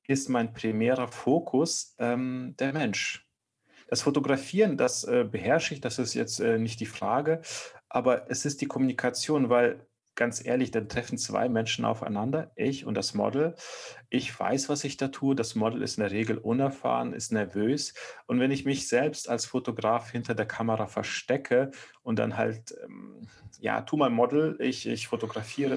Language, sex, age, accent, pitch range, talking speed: German, male, 40-59, German, 115-140 Hz, 170 wpm